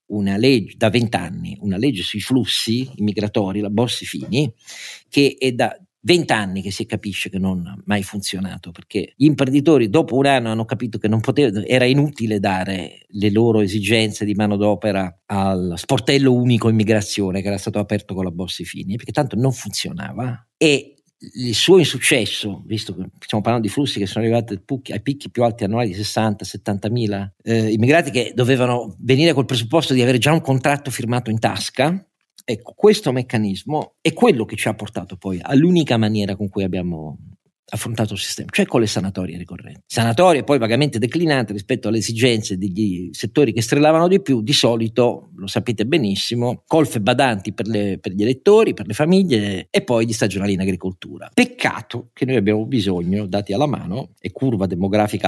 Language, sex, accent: Italian, male, native